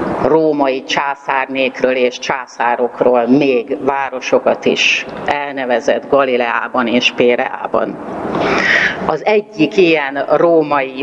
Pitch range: 125-155 Hz